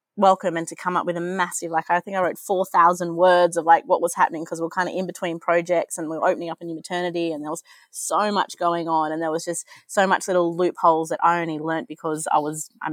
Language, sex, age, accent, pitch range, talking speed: English, female, 20-39, Australian, 160-185 Hz, 265 wpm